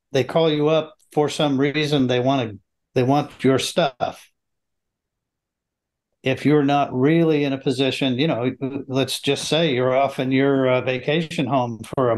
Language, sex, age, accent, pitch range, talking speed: English, male, 50-69, American, 125-150 Hz, 170 wpm